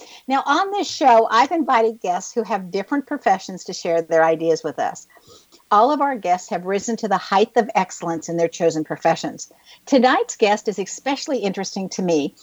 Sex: female